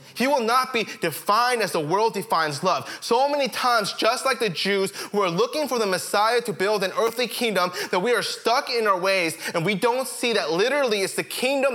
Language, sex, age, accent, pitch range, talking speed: English, male, 20-39, American, 160-220 Hz, 225 wpm